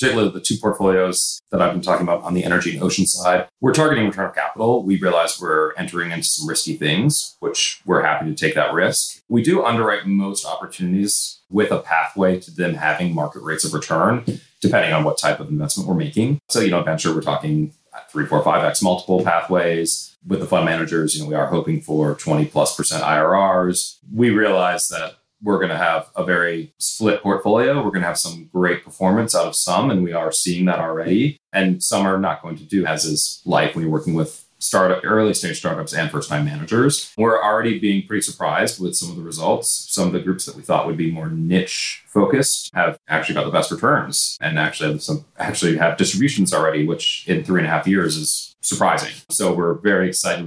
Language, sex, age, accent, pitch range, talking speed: English, male, 30-49, American, 85-115 Hz, 215 wpm